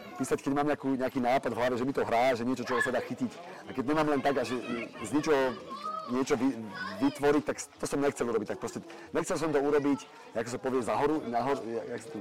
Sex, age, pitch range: male, 30-49, 125-150 Hz